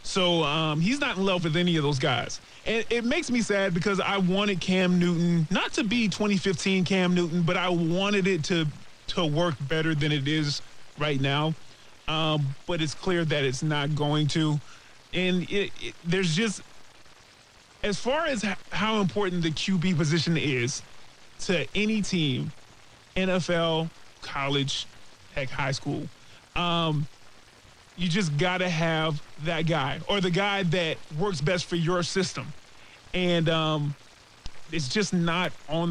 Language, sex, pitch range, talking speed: English, male, 150-190 Hz, 160 wpm